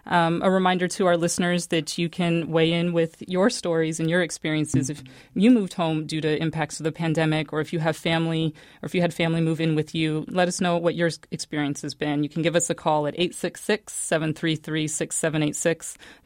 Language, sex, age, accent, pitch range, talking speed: English, female, 30-49, American, 150-170 Hz, 210 wpm